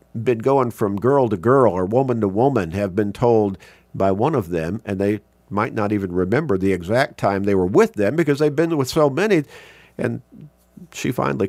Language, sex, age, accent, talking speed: English, male, 50-69, American, 205 wpm